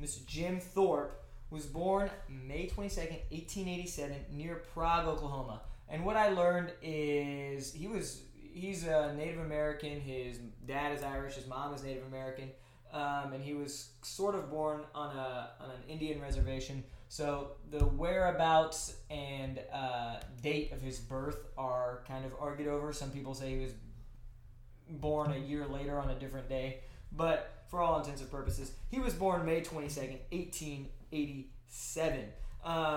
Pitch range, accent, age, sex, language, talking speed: 130-155 Hz, American, 20-39, male, English, 155 wpm